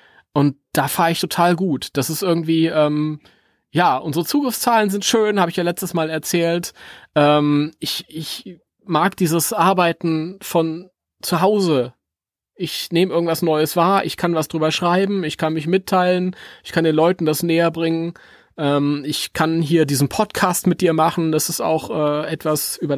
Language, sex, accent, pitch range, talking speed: German, male, German, 145-175 Hz, 170 wpm